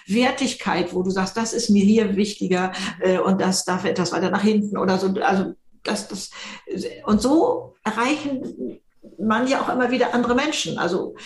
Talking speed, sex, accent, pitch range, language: 175 wpm, female, German, 195-255 Hz, German